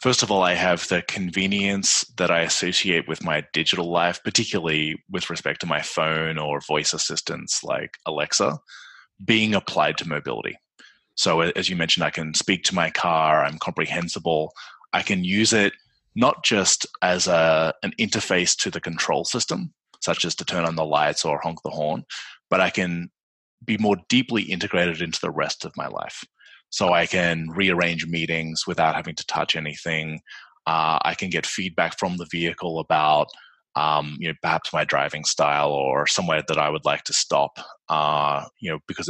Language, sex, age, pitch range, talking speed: English, male, 20-39, 80-95 Hz, 180 wpm